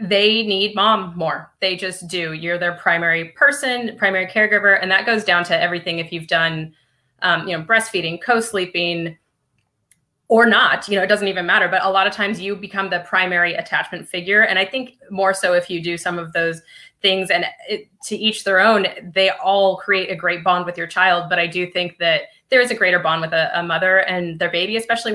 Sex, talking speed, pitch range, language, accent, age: female, 215 wpm, 170-210 Hz, English, American, 20-39